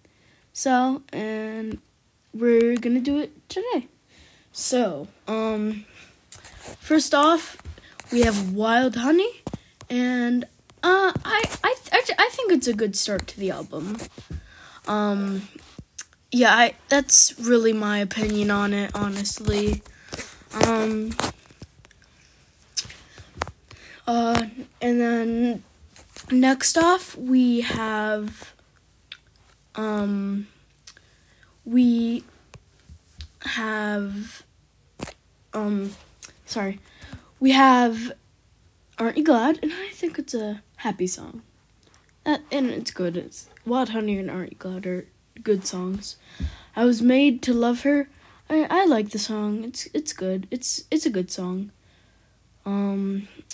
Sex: female